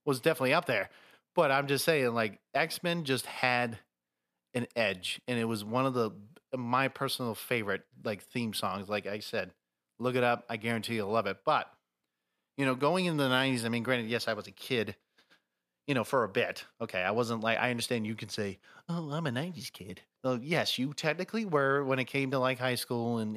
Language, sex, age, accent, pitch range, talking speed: English, male, 30-49, American, 105-130 Hz, 215 wpm